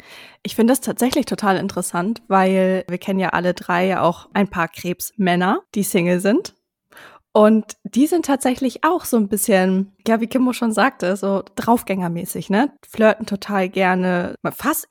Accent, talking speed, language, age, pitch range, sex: German, 160 wpm, German, 20-39, 190-220 Hz, female